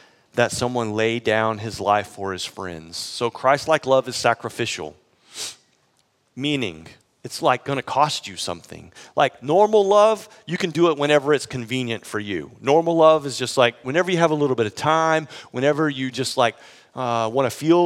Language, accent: English, American